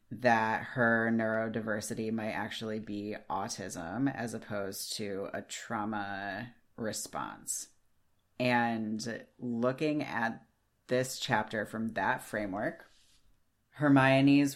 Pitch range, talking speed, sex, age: 110-125 Hz, 90 wpm, female, 30-49